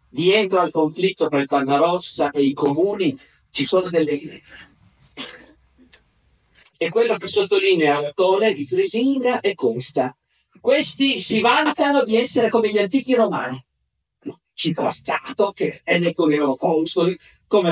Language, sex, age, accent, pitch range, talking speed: Italian, male, 50-69, native, 145-200 Hz, 130 wpm